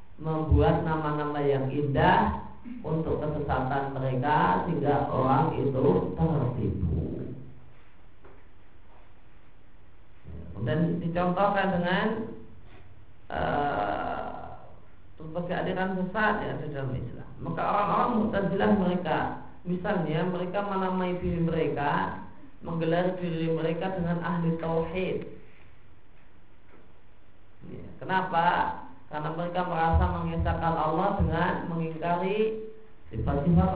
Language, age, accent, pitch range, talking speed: Indonesian, 40-59, native, 115-180 Hz, 80 wpm